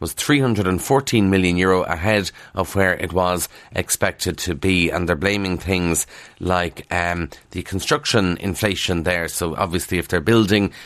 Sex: male